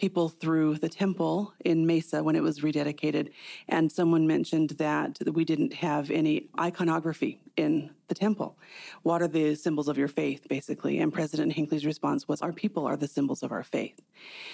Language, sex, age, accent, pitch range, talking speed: English, female, 30-49, American, 155-195 Hz, 180 wpm